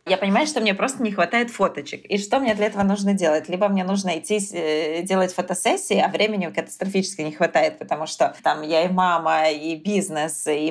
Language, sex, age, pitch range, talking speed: Russian, female, 20-39, 180-230 Hz, 195 wpm